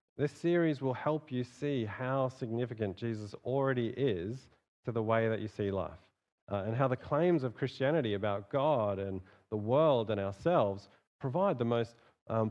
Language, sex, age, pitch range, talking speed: English, male, 40-59, 100-135 Hz, 175 wpm